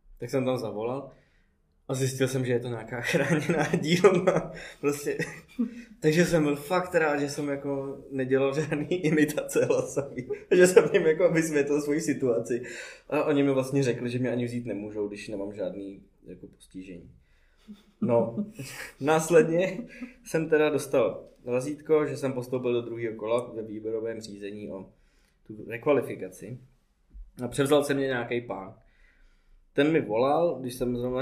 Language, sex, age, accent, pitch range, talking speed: Czech, male, 20-39, native, 115-145 Hz, 150 wpm